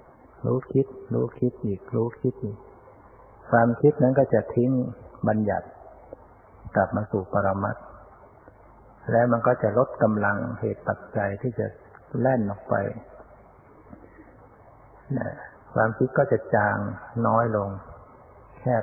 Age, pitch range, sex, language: 60-79, 100-125 Hz, male, Thai